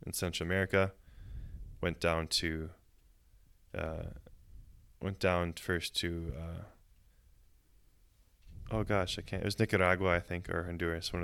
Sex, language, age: male, English, 20-39